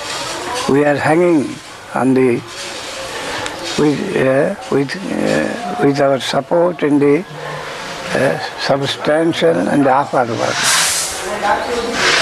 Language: Russian